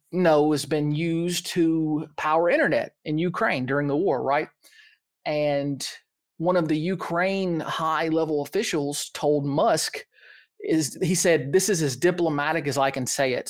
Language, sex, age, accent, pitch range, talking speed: English, male, 30-49, American, 145-190 Hz, 150 wpm